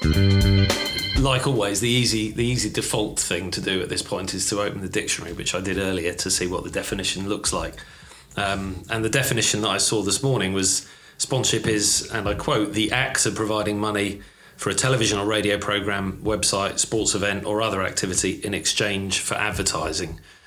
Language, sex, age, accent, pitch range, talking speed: English, male, 30-49, British, 95-105 Hz, 190 wpm